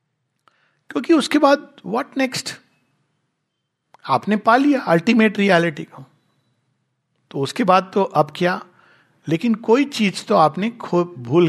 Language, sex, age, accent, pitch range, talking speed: Hindi, male, 60-79, native, 160-240 Hz, 125 wpm